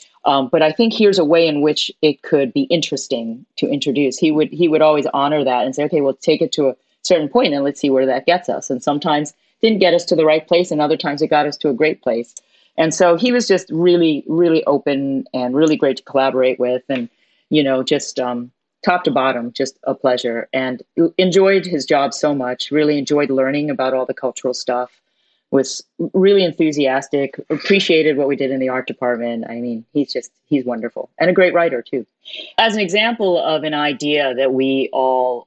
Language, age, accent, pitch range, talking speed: English, 30-49, American, 130-155 Hz, 220 wpm